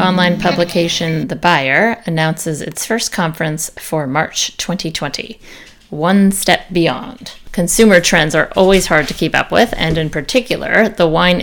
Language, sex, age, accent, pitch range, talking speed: English, female, 30-49, American, 155-185 Hz, 145 wpm